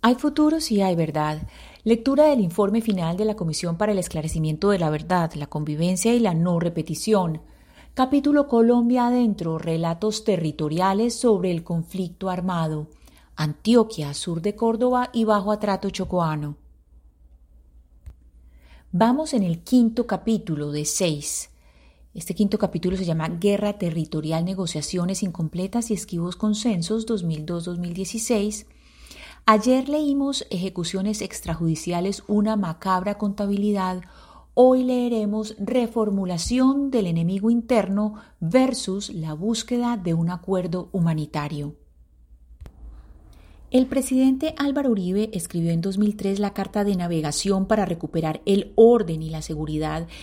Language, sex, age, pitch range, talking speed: Spanish, female, 30-49, 160-220 Hz, 120 wpm